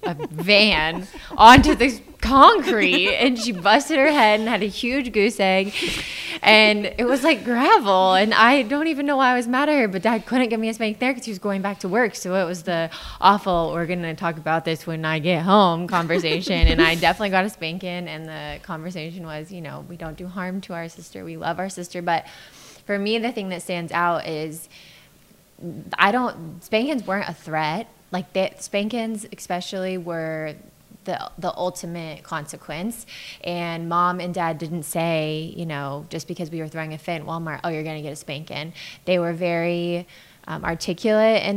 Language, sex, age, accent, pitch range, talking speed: English, female, 20-39, American, 165-205 Hz, 200 wpm